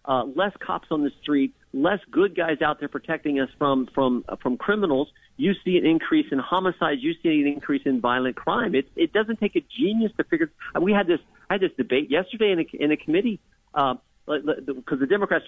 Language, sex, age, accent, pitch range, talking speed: English, male, 50-69, American, 145-195 Hz, 225 wpm